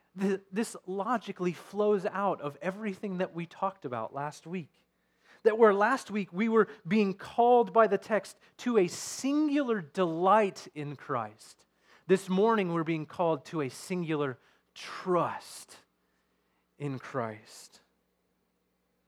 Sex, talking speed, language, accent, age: male, 125 wpm, English, American, 30-49